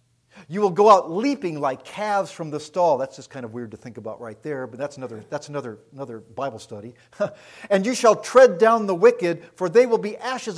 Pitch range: 120-175 Hz